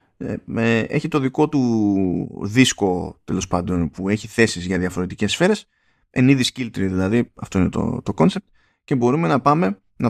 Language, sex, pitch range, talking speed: Greek, male, 100-135 Hz, 155 wpm